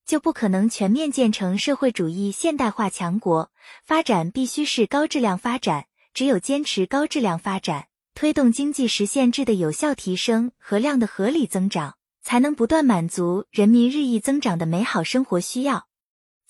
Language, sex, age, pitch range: Chinese, female, 20-39, 195-280 Hz